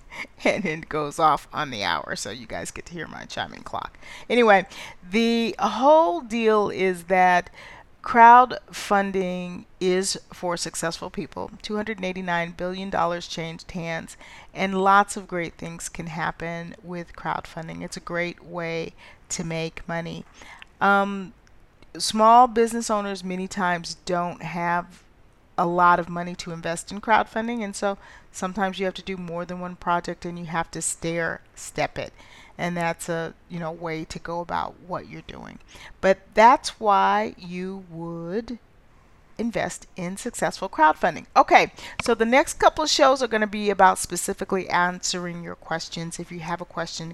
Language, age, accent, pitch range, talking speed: English, 40-59, American, 170-200 Hz, 155 wpm